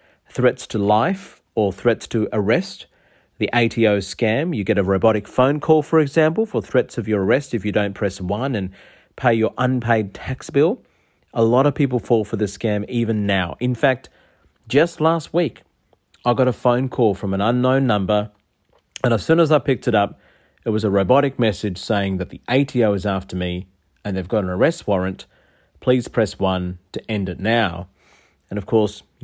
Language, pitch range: English, 100-130 Hz